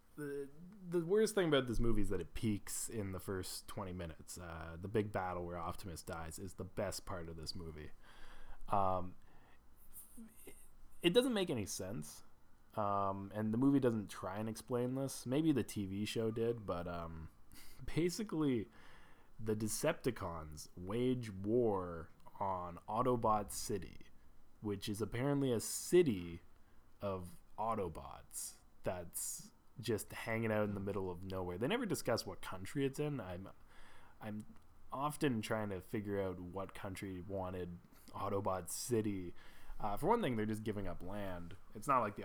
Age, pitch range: 20-39, 90-125 Hz